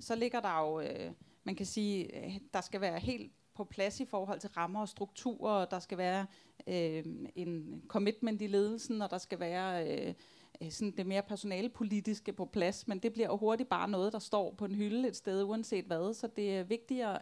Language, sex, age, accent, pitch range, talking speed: Danish, female, 30-49, native, 185-215 Hz, 210 wpm